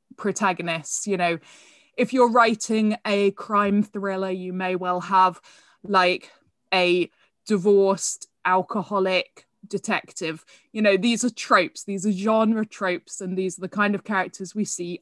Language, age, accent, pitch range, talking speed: English, 20-39, British, 185-225 Hz, 145 wpm